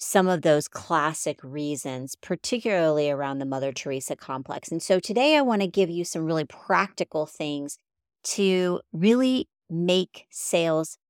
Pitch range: 150-195 Hz